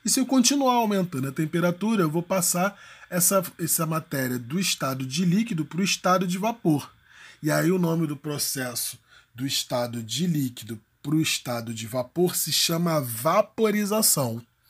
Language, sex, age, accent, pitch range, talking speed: Portuguese, male, 20-39, Brazilian, 135-190 Hz, 165 wpm